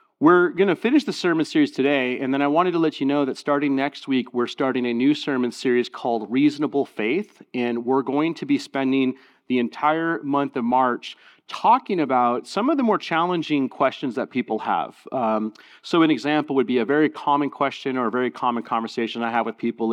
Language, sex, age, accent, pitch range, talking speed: English, male, 30-49, American, 120-150 Hz, 210 wpm